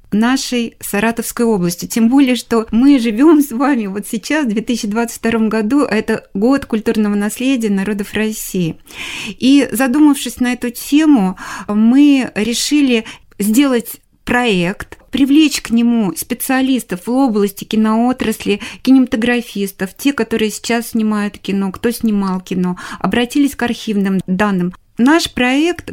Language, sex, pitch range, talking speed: Russian, female, 210-255 Hz, 120 wpm